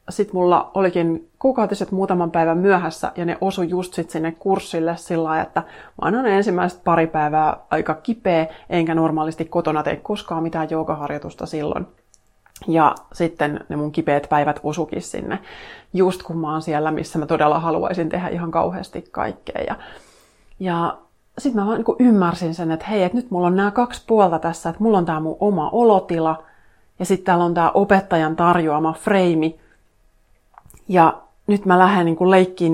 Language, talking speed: Finnish, 165 wpm